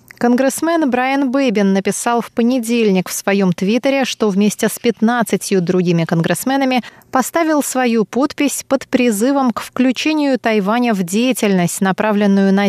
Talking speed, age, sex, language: 130 wpm, 20-39, female, Russian